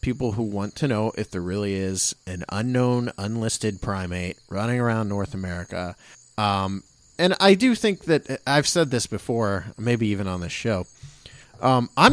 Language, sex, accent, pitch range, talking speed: English, male, American, 100-130 Hz, 165 wpm